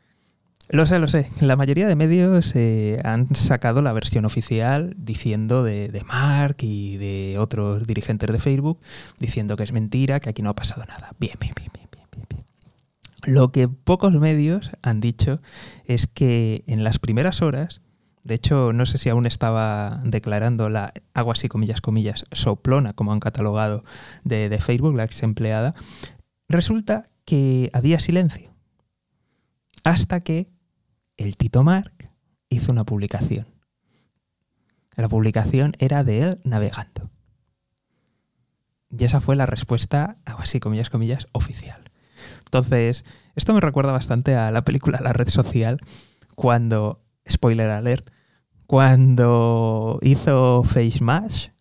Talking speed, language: 140 wpm, Spanish